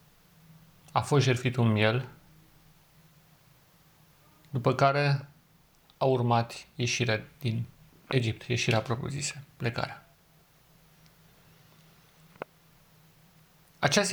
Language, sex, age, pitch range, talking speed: Romanian, male, 40-59, 120-160 Hz, 70 wpm